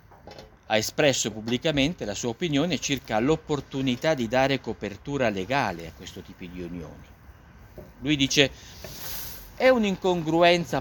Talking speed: 115 wpm